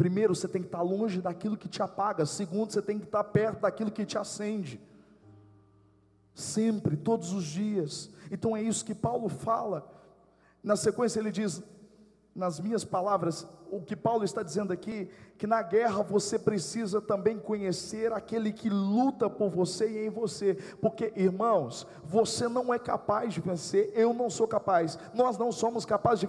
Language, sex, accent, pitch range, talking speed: Portuguese, male, Brazilian, 195-250 Hz, 170 wpm